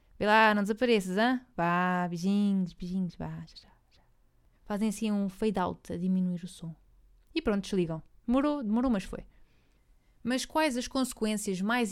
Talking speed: 145 wpm